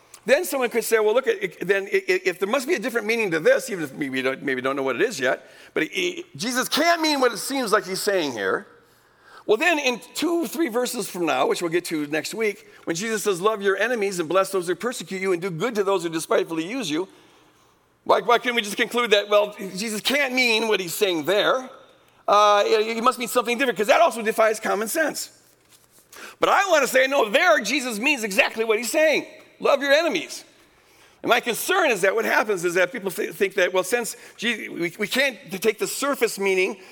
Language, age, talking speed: English, 50-69, 235 wpm